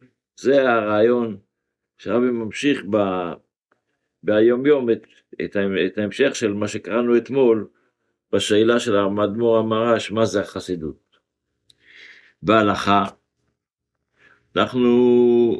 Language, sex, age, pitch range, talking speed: Hebrew, male, 60-79, 95-115 Hz, 90 wpm